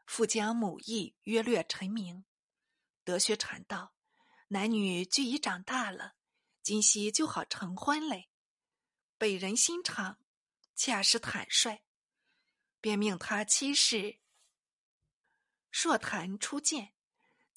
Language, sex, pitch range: Chinese, female, 200-280 Hz